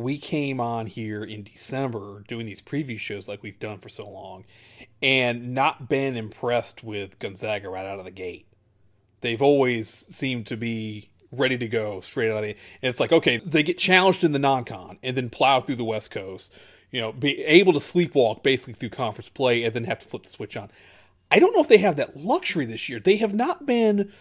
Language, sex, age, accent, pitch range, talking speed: English, male, 30-49, American, 115-180 Hz, 220 wpm